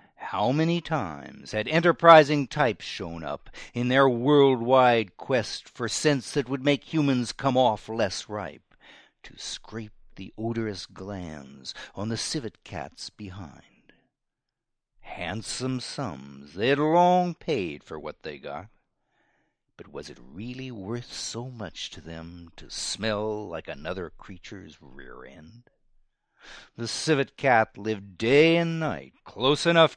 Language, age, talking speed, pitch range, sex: English, 60-79, 130 wpm, 100-145 Hz, male